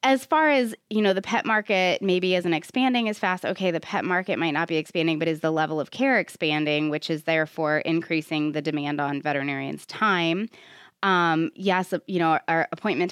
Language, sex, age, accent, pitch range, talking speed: English, female, 20-39, American, 155-180 Hz, 195 wpm